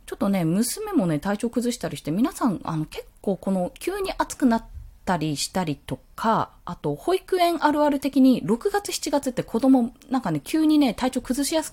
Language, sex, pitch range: Japanese, female, 170-275 Hz